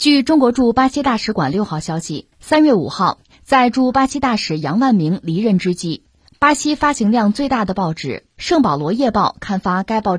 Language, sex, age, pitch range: Chinese, female, 20-39, 170-255 Hz